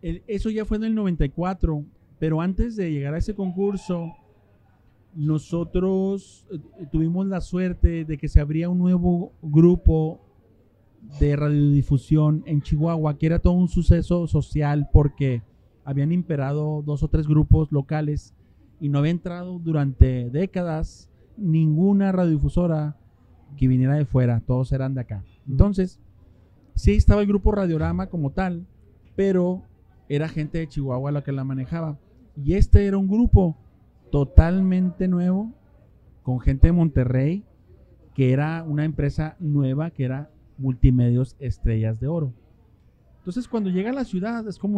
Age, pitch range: 40-59, 130-180 Hz